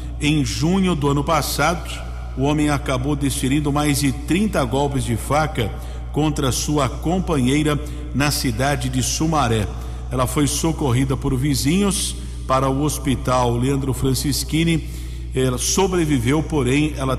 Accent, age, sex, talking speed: Brazilian, 50-69, male, 125 wpm